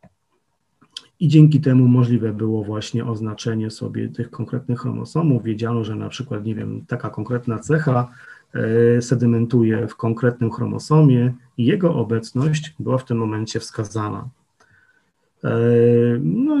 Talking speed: 120 wpm